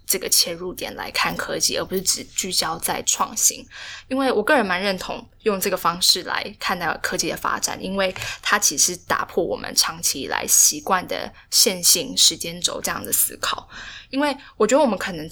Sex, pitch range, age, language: female, 175-215 Hz, 10-29, Chinese